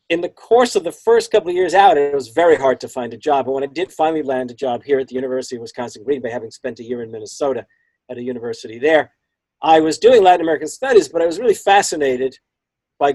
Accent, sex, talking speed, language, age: American, male, 255 wpm, English, 50-69